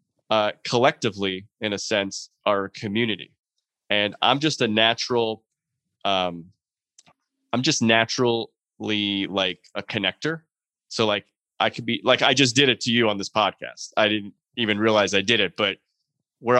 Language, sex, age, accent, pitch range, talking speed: English, male, 20-39, American, 105-135 Hz, 155 wpm